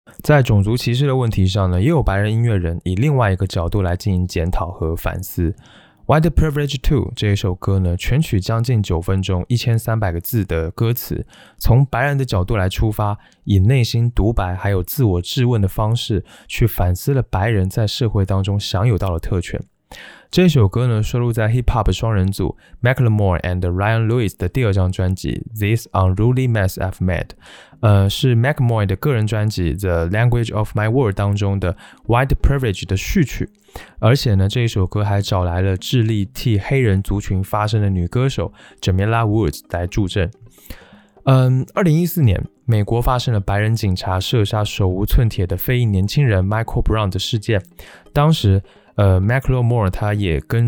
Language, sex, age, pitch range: Chinese, male, 20-39, 95-120 Hz